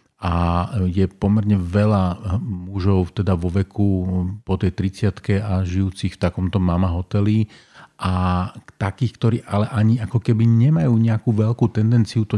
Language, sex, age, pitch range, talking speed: Slovak, male, 40-59, 95-110 Hz, 140 wpm